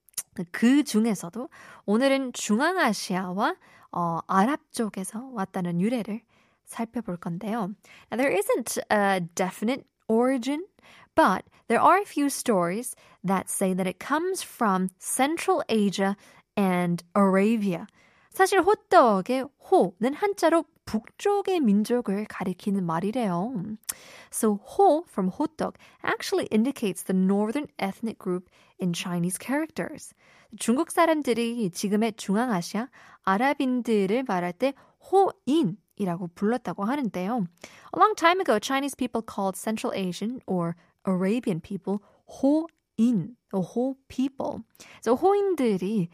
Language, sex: Korean, female